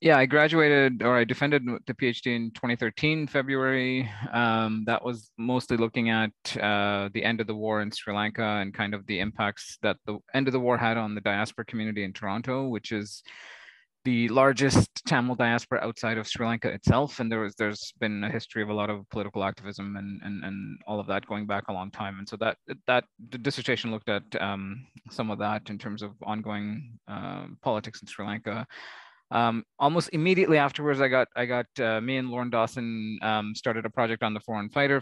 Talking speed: 205 wpm